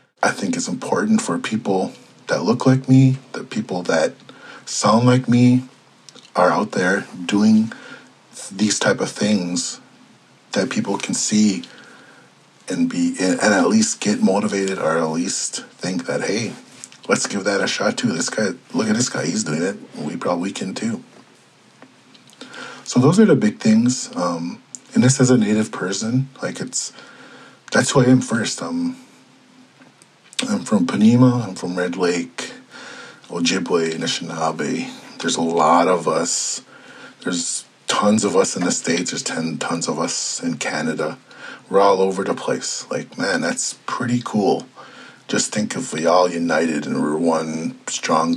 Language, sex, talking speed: English, male, 160 wpm